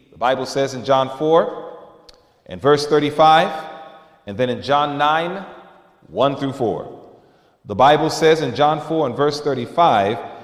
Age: 40-59